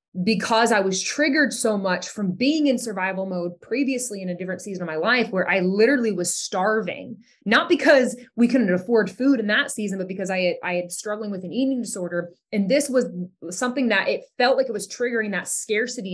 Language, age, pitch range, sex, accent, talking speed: English, 20-39, 180-245 Hz, female, American, 210 wpm